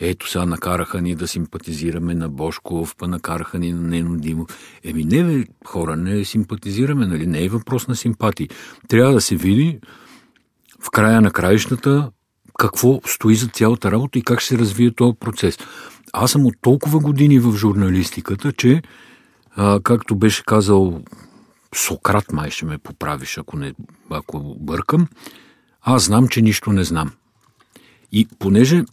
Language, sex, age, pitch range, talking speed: Bulgarian, male, 50-69, 90-125 Hz, 150 wpm